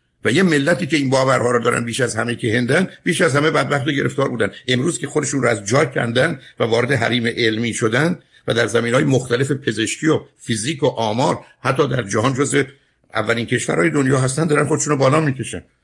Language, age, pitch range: Persian, 60-79, 120-150 Hz